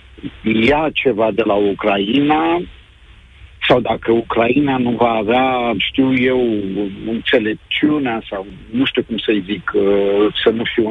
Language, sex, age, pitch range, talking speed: Romanian, male, 50-69, 110-140 Hz, 125 wpm